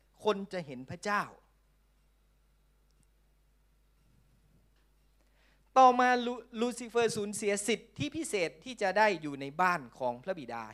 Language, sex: Thai, male